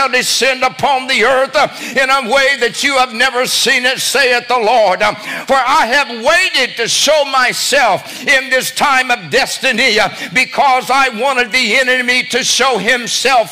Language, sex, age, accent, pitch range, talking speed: English, male, 60-79, American, 250-265 Hz, 160 wpm